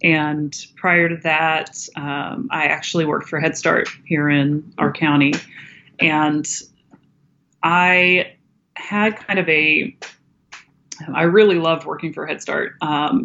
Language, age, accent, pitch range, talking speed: English, 30-49, American, 155-180 Hz, 130 wpm